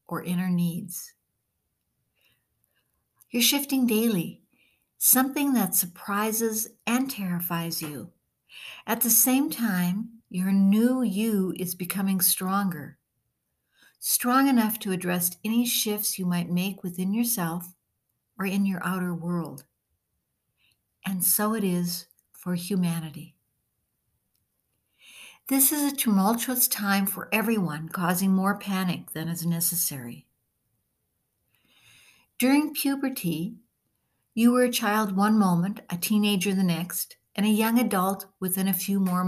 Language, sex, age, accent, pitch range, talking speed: English, female, 60-79, American, 180-225 Hz, 120 wpm